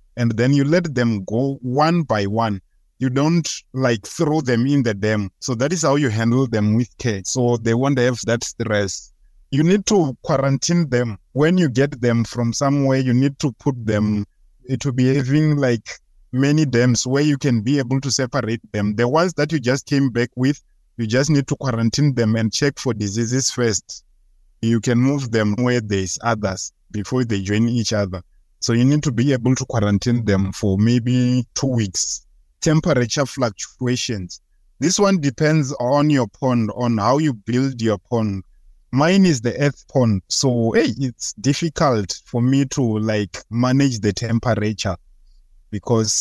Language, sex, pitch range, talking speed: English, male, 110-140 Hz, 180 wpm